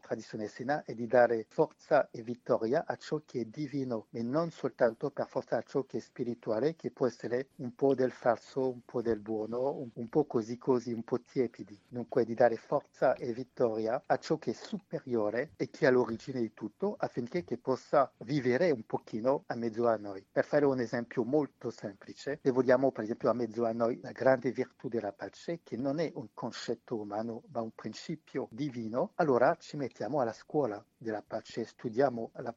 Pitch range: 115-145 Hz